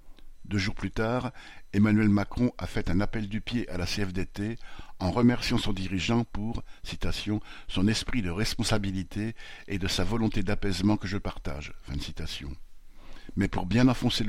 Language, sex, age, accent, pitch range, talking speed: French, male, 60-79, French, 95-110 Hz, 165 wpm